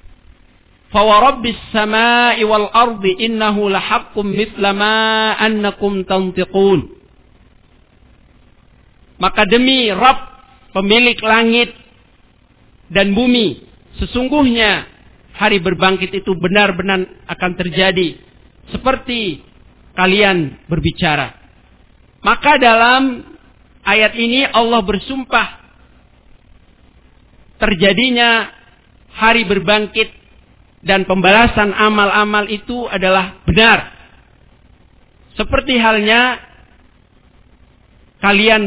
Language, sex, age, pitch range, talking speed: Malay, male, 50-69, 190-235 Hz, 75 wpm